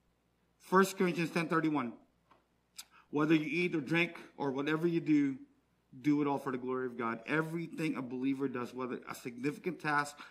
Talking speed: 165 wpm